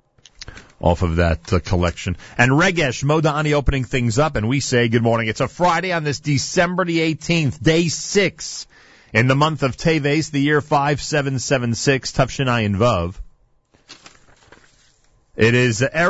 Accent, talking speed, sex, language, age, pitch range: American, 130 wpm, male, English, 40-59, 100-145 Hz